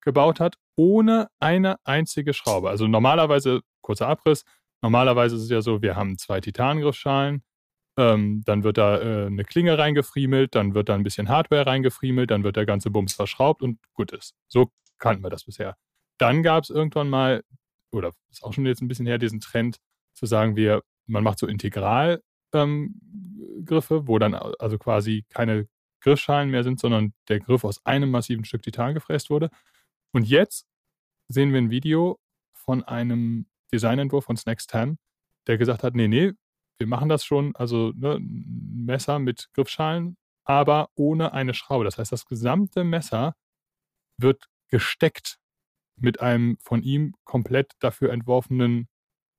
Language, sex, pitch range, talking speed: German, male, 115-150 Hz, 165 wpm